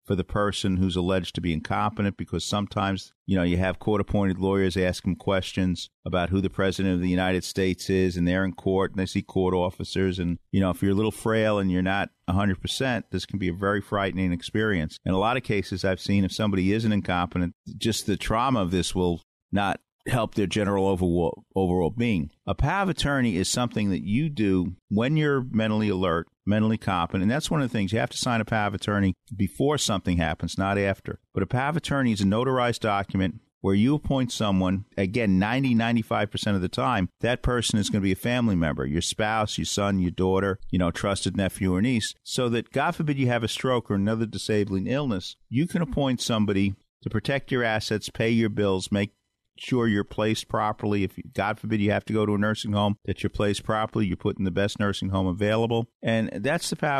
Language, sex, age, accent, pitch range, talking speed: English, male, 50-69, American, 95-120 Hz, 220 wpm